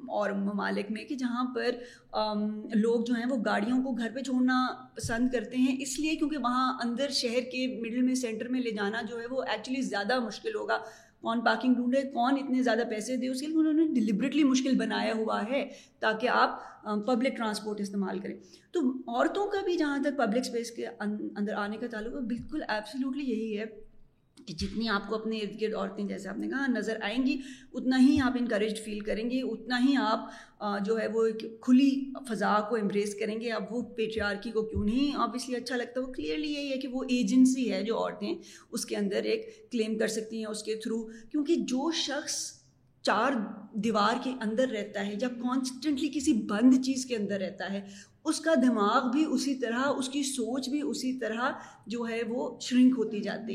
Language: Urdu